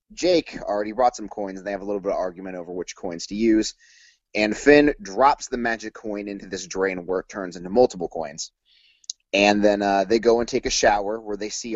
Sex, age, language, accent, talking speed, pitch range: male, 30-49, English, American, 230 wpm, 95-120 Hz